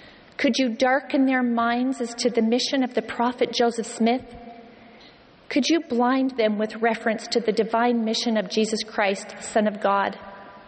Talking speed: 175 wpm